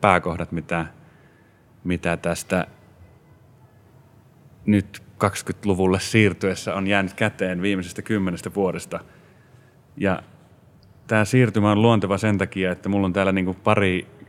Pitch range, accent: 90-100 Hz, native